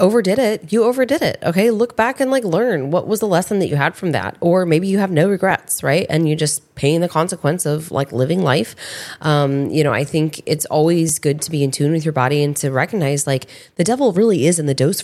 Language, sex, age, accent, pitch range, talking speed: English, female, 20-39, American, 145-185 Hz, 250 wpm